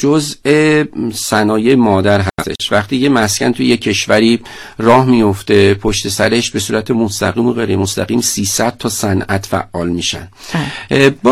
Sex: male